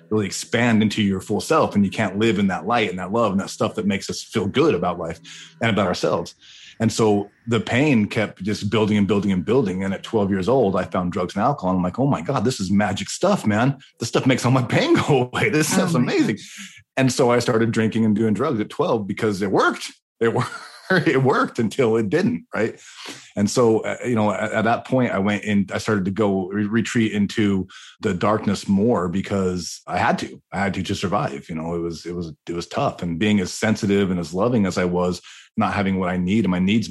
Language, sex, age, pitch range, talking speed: English, male, 30-49, 90-110 Hz, 240 wpm